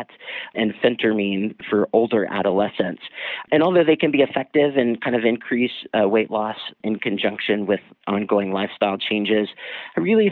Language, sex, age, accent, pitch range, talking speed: English, male, 40-59, American, 100-125 Hz, 150 wpm